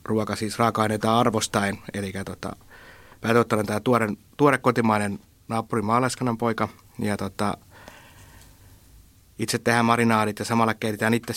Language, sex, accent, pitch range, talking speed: Finnish, male, native, 100-115 Hz, 115 wpm